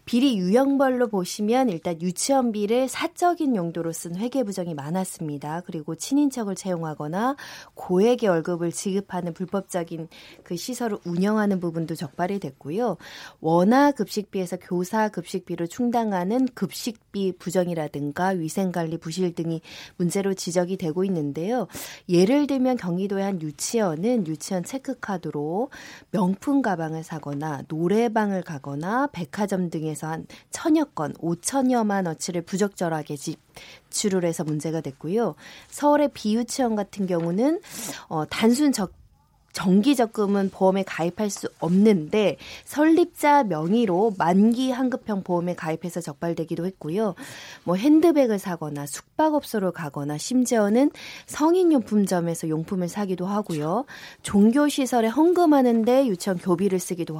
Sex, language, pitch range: female, Korean, 170-240 Hz